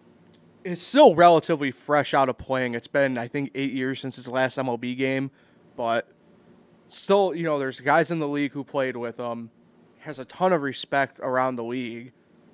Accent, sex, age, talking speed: American, male, 20-39, 185 wpm